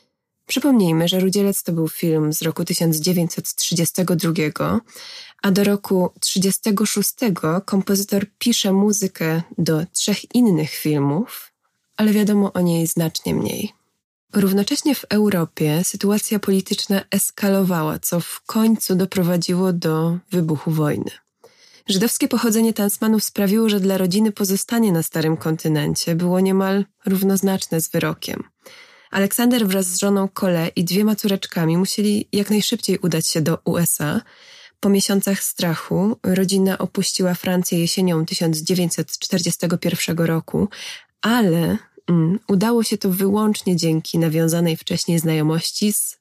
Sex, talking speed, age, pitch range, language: female, 115 wpm, 20-39, 170-210 Hz, Polish